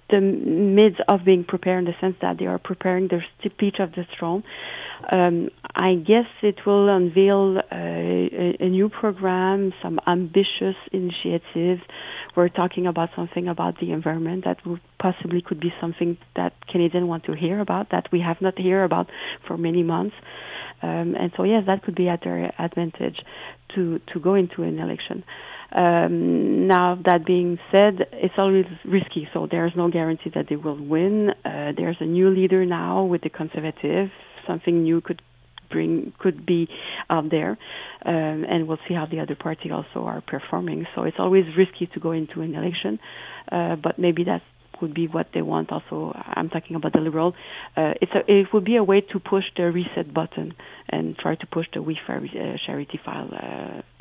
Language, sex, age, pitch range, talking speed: English, female, 40-59, 160-190 Hz, 185 wpm